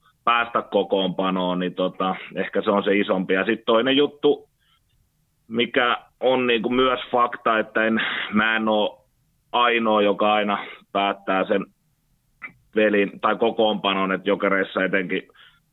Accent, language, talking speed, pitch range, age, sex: native, Finnish, 130 wpm, 95-115 Hz, 30-49, male